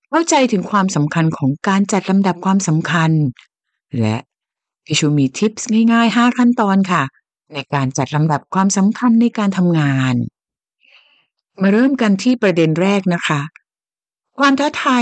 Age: 60-79